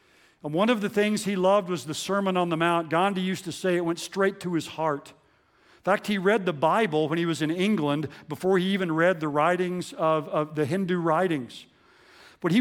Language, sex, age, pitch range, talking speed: English, male, 50-69, 155-195 Hz, 225 wpm